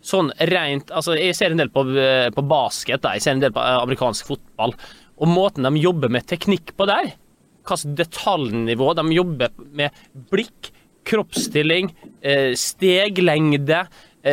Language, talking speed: English, 140 wpm